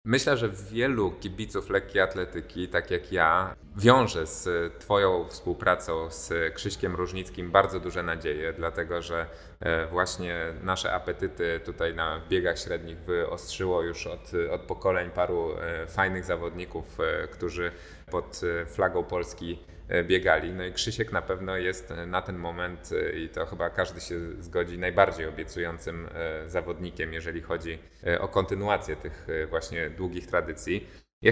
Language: Polish